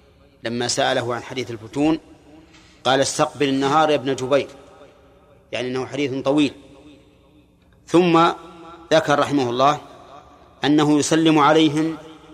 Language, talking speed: Arabic, 105 wpm